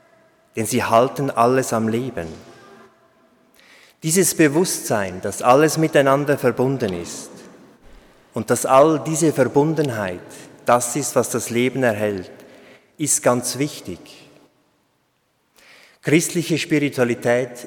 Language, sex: German, male